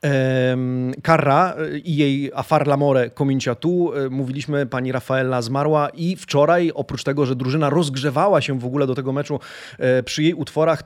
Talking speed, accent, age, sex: 150 wpm, native, 30-49, male